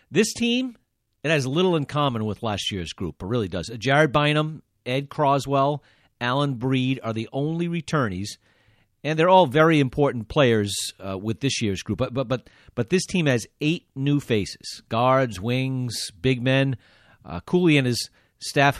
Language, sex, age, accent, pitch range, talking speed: English, male, 40-59, American, 110-150 Hz, 165 wpm